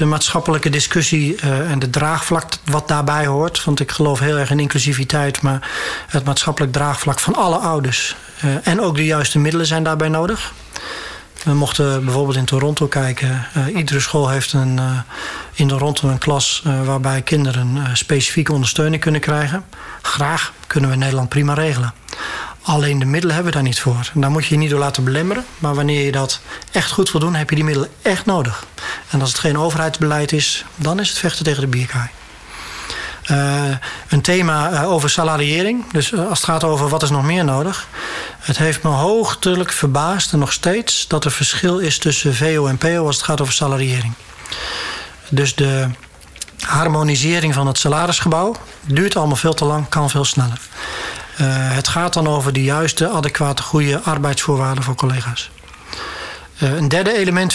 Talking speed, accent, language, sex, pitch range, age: 175 wpm, Dutch, Dutch, male, 135-160 Hz, 40-59